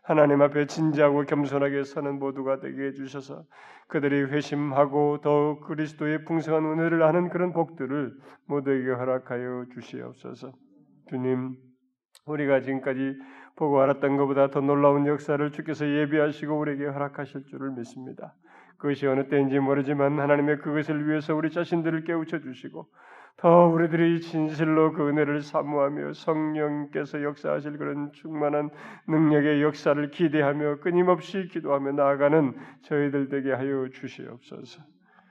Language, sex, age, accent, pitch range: Korean, male, 30-49, native, 135-150 Hz